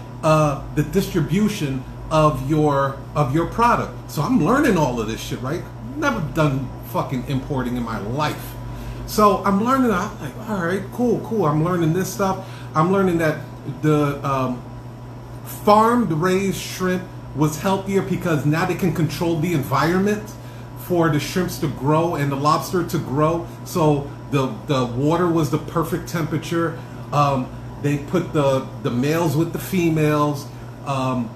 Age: 40-59